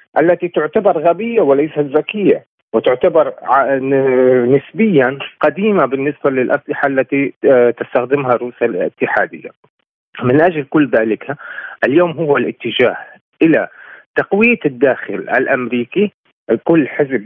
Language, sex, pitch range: Arabic, male, 120-165 Hz